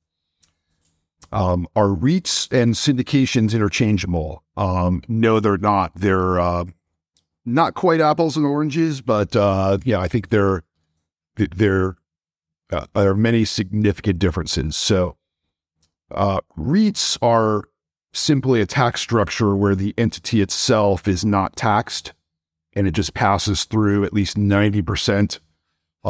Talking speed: 120 wpm